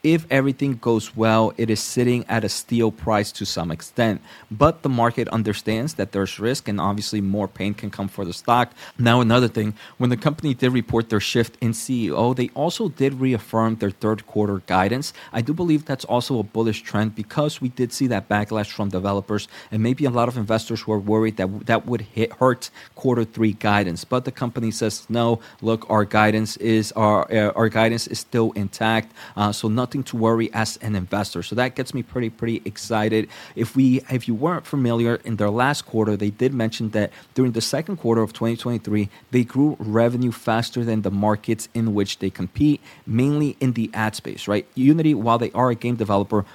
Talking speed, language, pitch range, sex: 200 wpm, English, 105-125 Hz, male